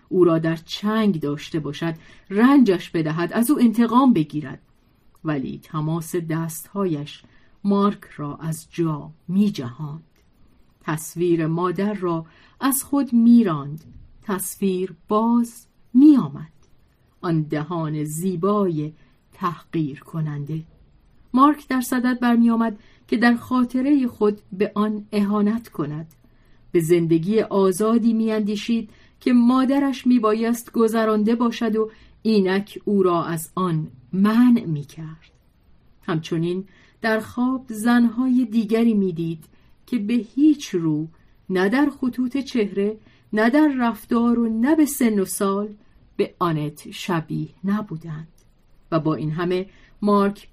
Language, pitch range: Persian, 165-230 Hz